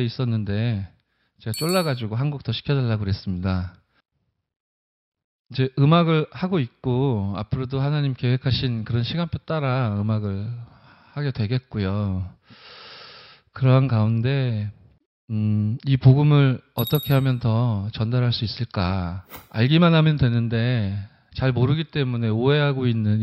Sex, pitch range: male, 110-140 Hz